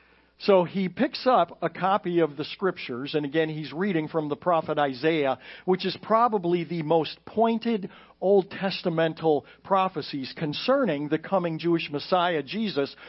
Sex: male